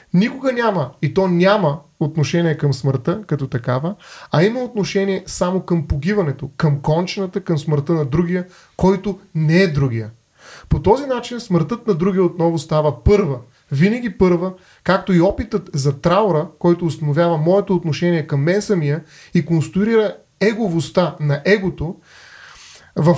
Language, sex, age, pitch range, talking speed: Bulgarian, male, 30-49, 150-195 Hz, 140 wpm